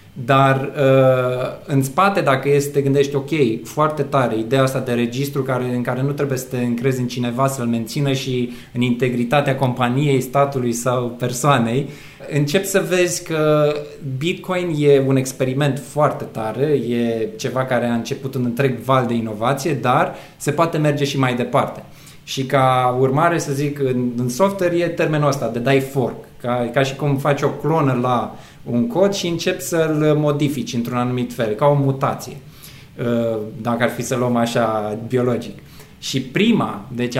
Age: 20-39